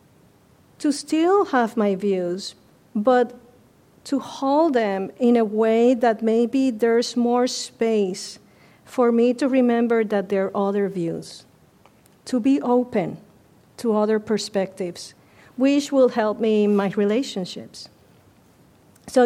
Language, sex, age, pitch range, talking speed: English, female, 40-59, 195-235 Hz, 125 wpm